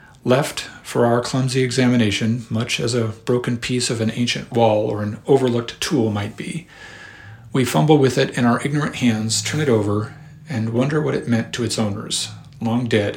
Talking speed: 185 wpm